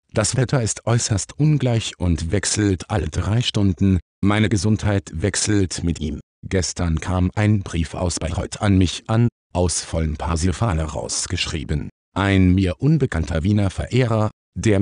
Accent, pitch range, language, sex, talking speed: German, 85-115 Hz, German, male, 140 wpm